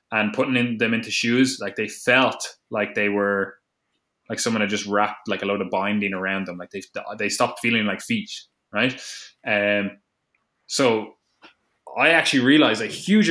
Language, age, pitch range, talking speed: English, 20-39, 105-125 Hz, 175 wpm